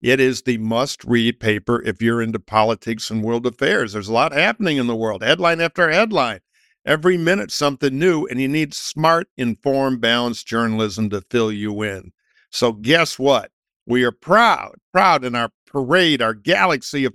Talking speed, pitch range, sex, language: 175 wpm, 110-140 Hz, male, English